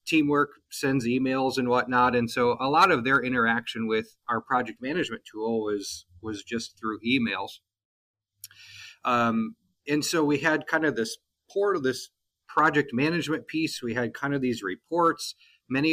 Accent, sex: American, male